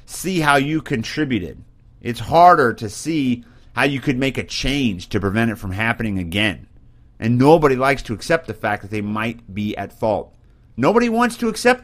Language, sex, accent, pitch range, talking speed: English, male, American, 115-175 Hz, 190 wpm